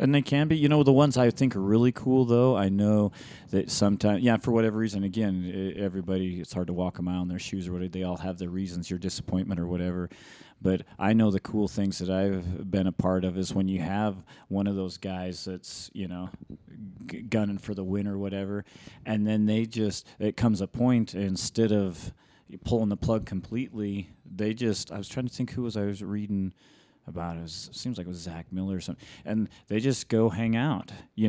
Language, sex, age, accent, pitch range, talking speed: English, male, 30-49, American, 95-110 Hz, 225 wpm